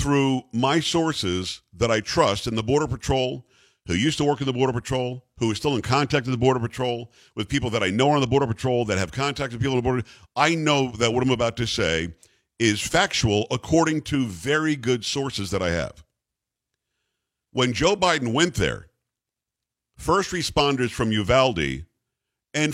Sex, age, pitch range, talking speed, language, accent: male, 50-69, 110-145 Hz, 195 wpm, English, American